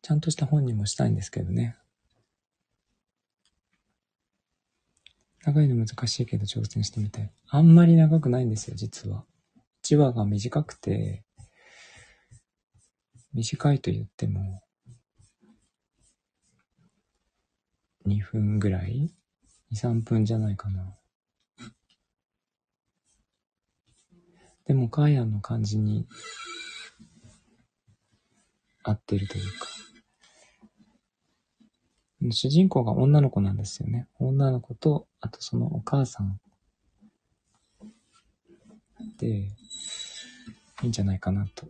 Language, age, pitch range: Japanese, 40-59, 105-150 Hz